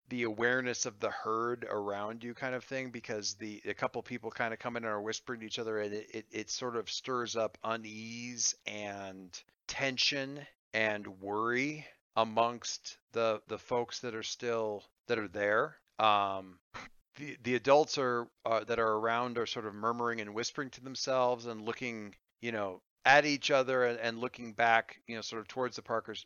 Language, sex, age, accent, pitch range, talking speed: English, male, 40-59, American, 105-130 Hz, 185 wpm